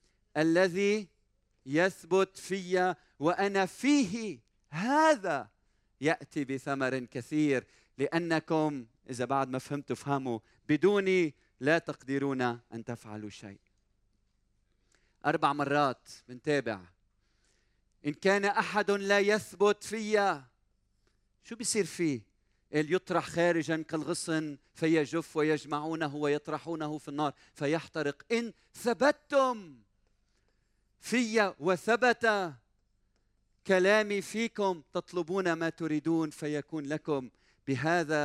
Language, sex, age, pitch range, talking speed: Arabic, male, 40-59, 115-175 Hz, 85 wpm